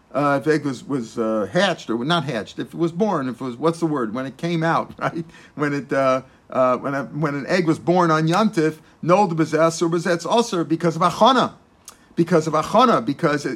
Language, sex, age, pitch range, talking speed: English, male, 50-69, 155-180 Hz, 225 wpm